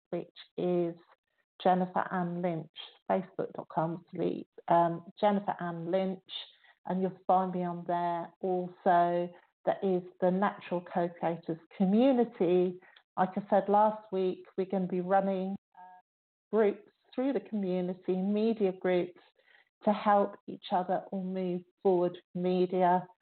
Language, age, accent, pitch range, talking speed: English, 50-69, British, 175-200 Hz, 130 wpm